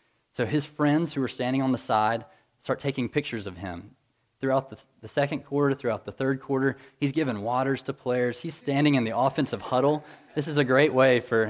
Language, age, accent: English, 30-49, American